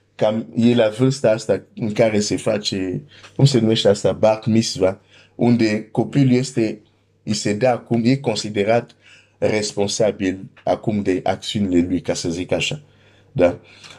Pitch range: 100-120 Hz